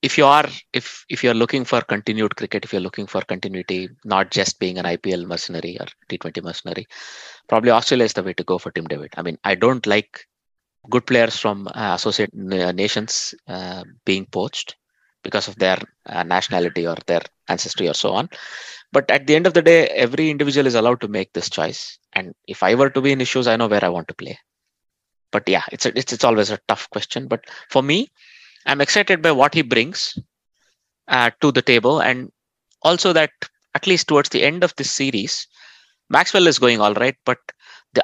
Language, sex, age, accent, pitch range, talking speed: English, male, 20-39, Indian, 100-140 Hz, 205 wpm